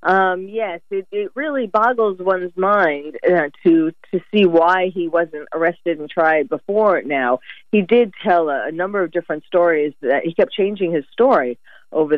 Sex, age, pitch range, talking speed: female, 50-69, 170-225 Hz, 175 wpm